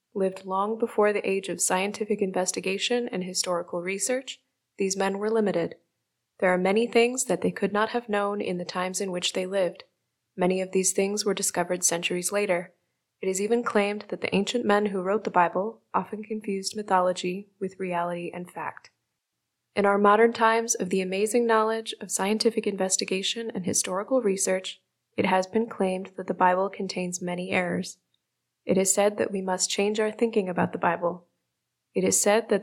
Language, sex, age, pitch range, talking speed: English, female, 20-39, 185-215 Hz, 180 wpm